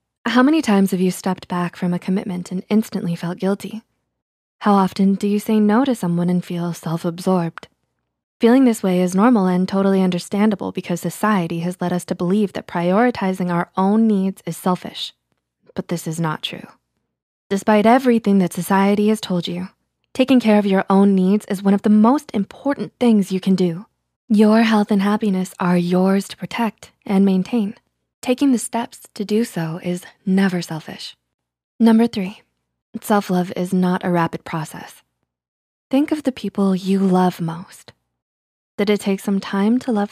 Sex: female